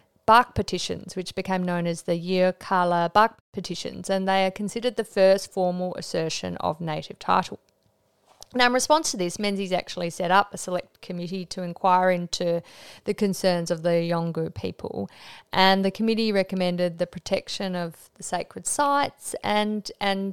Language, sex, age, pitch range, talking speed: English, female, 30-49, 180-210 Hz, 160 wpm